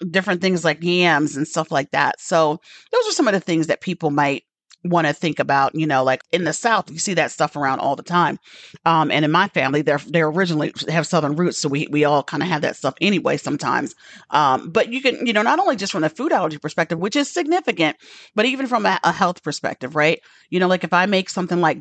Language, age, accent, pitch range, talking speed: English, 40-59, American, 155-215 Hz, 250 wpm